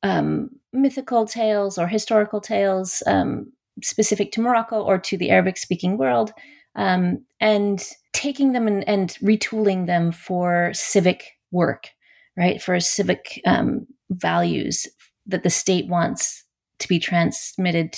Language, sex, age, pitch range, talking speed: English, female, 30-49, 175-220 Hz, 130 wpm